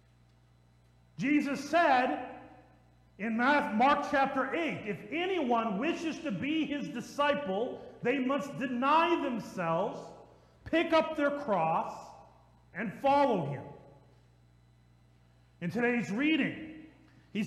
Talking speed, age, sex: 95 wpm, 40-59, male